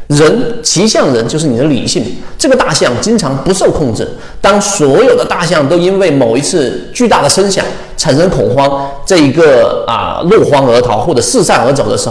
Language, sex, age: Chinese, male, 30-49